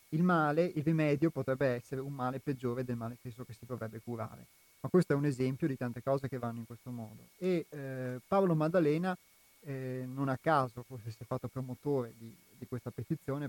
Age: 30-49